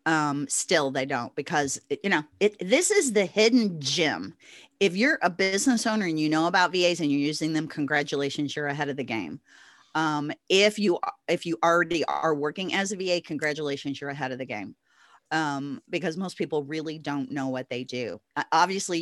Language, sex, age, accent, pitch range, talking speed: English, female, 40-59, American, 150-210 Hz, 195 wpm